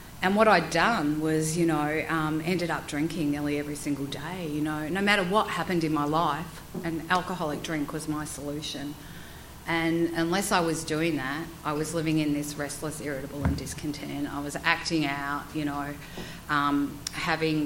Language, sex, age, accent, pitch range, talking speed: English, female, 40-59, Australian, 150-170 Hz, 180 wpm